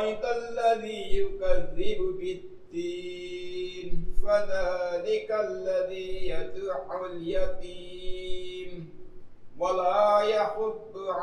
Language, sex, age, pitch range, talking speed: Indonesian, male, 60-79, 160-195 Hz, 55 wpm